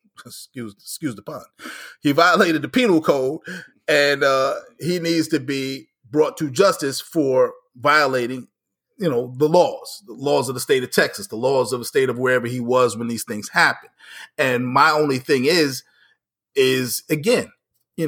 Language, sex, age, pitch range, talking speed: English, male, 30-49, 130-160 Hz, 175 wpm